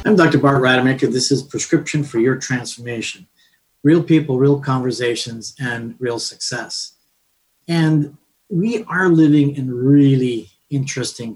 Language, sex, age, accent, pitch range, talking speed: English, male, 40-59, American, 120-145 Hz, 125 wpm